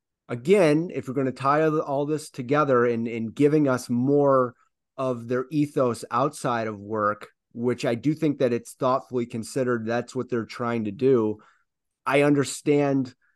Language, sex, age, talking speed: English, male, 30-49, 165 wpm